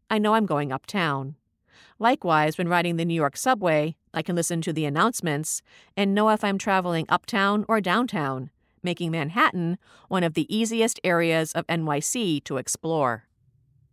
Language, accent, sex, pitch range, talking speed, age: English, American, female, 150-210 Hz, 160 wpm, 50-69